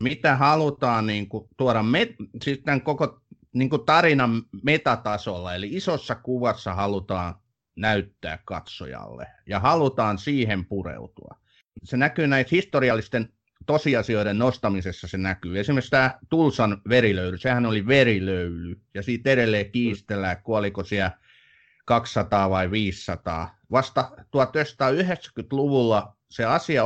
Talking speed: 110 wpm